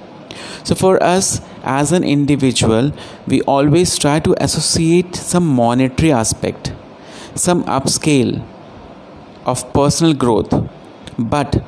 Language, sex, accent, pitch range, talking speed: Hindi, male, native, 125-155 Hz, 105 wpm